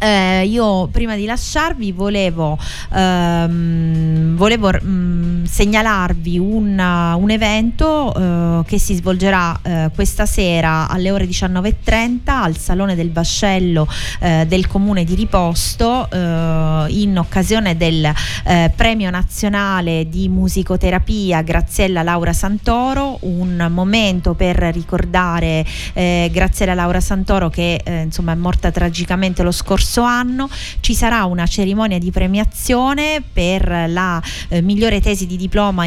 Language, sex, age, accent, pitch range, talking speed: Italian, female, 30-49, native, 170-205 Hz, 120 wpm